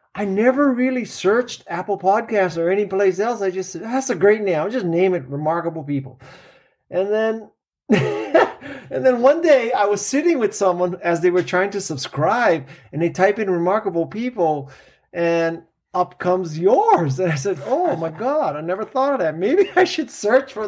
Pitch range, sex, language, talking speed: 150-200 Hz, male, English, 190 wpm